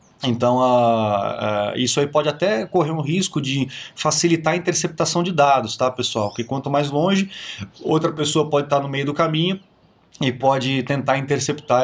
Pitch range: 120-150 Hz